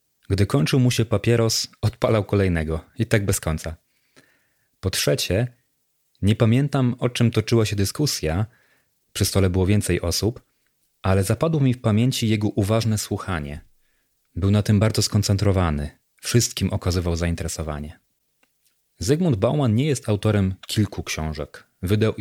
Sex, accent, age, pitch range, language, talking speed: male, native, 30-49, 95-115 Hz, Polish, 130 wpm